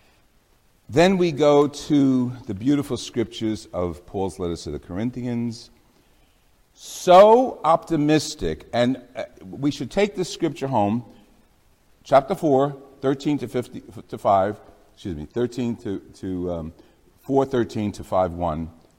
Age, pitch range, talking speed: 60-79, 110-150 Hz, 125 wpm